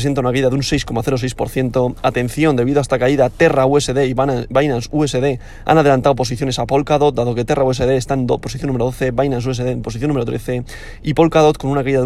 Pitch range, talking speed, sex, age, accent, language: 120-145 Hz, 210 wpm, male, 20-39, Spanish, Spanish